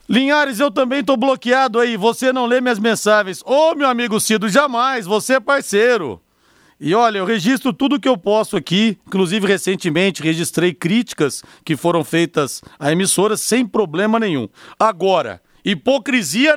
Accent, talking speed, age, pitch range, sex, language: Brazilian, 150 wpm, 40-59, 200-260 Hz, male, Portuguese